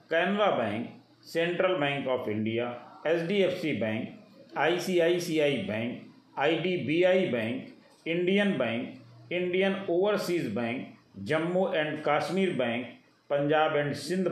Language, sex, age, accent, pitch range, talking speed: Hindi, male, 50-69, native, 135-170 Hz, 100 wpm